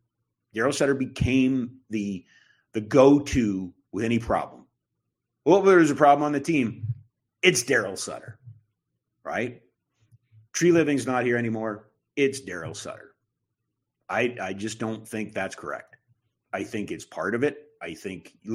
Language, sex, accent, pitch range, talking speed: English, male, American, 110-130 Hz, 145 wpm